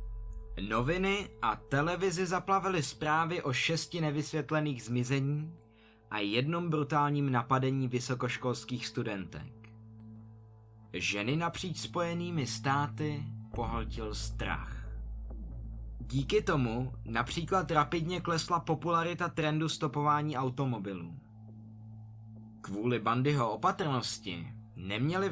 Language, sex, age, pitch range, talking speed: Czech, male, 20-39, 110-155 Hz, 80 wpm